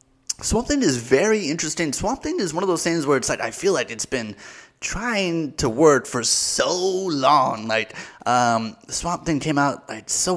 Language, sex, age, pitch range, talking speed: English, male, 20-39, 125-185 Hz, 195 wpm